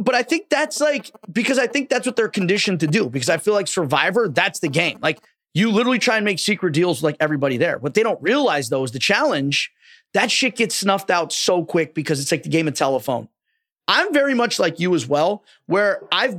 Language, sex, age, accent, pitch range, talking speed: English, male, 30-49, American, 155-230 Hz, 240 wpm